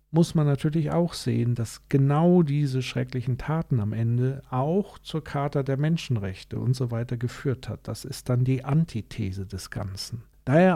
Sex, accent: male, German